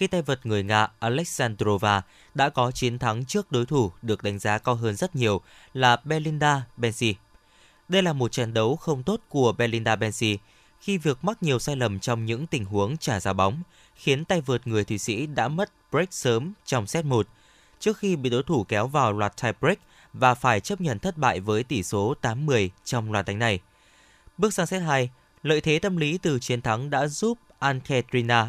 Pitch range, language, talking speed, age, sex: 115-150 Hz, Vietnamese, 205 wpm, 20-39, male